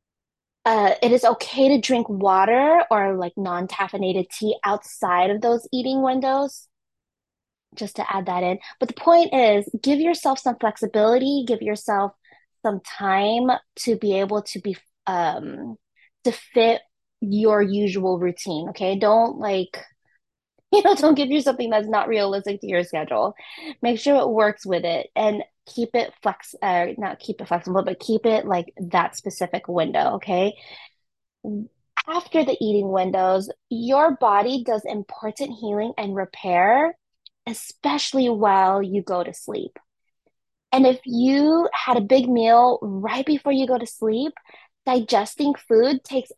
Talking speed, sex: 150 wpm, female